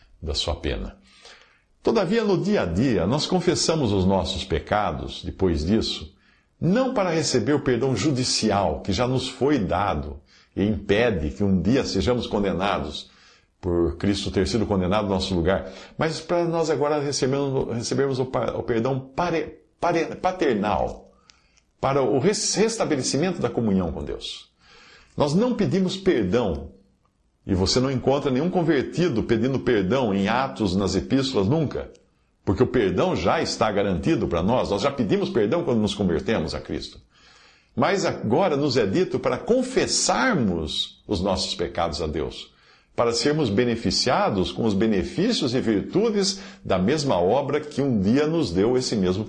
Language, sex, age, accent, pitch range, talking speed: Portuguese, male, 60-79, Brazilian, 95-150 Hz, 145 wpm